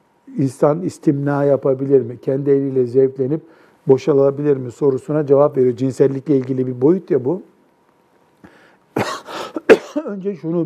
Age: 60-79